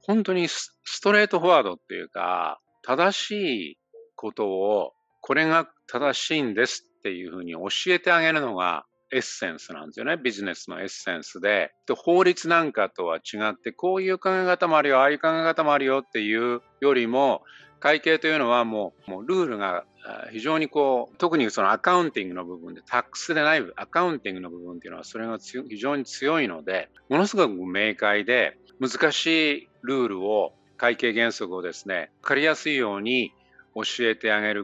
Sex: male